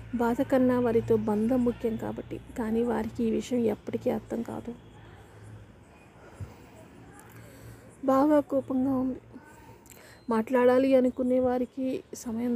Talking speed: 95 wpm